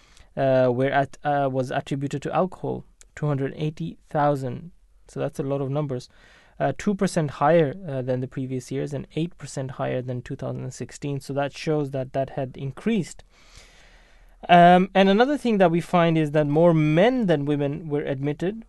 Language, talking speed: English, 190 wpm